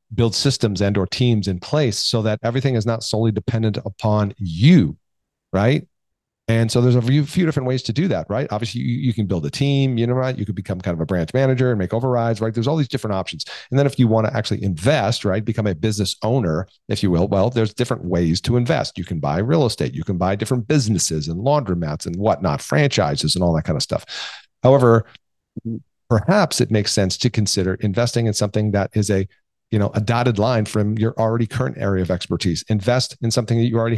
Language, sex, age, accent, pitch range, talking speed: English, male, 40-59, American, 100-120 Hz, 225 wpm